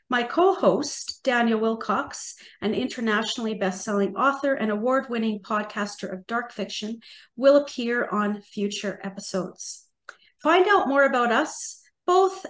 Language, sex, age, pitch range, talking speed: English, female, 40-59, 210-275 Hz, 120 wpm